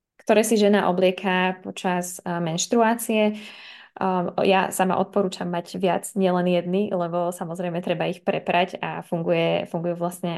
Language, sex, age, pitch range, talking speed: Slovak, female, 20-39, 175-195 Hz, 125 wpm